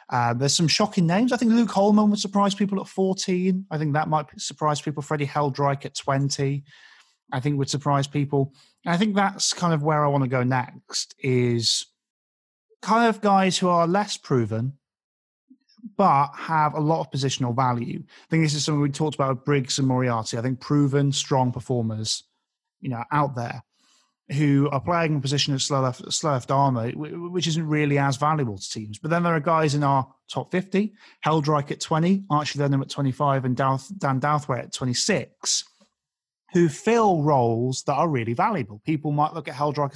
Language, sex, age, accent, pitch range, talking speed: English, male, 30-49, British, 135-170 Hz, 195 wpm